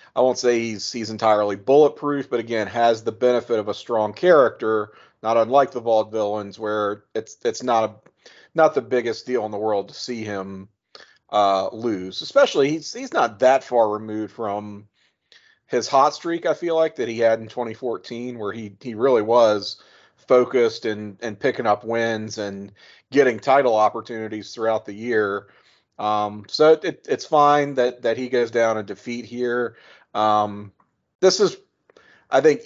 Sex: male